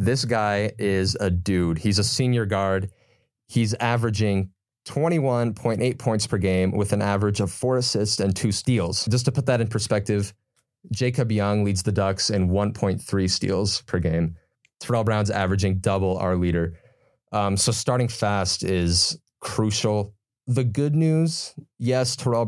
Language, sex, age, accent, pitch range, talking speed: English, male, 30-49, American, 95-120 Hz, 150 wpm